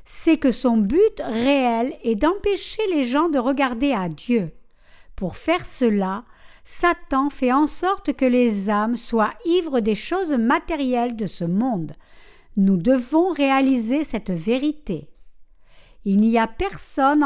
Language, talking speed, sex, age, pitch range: French, 140 wpm, female, 60-79, 215-310 Hz